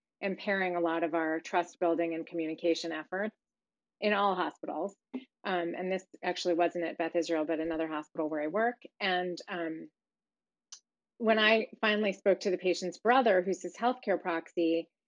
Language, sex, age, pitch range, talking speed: English, female, 30-49, 170-210 Hz, 165 wpm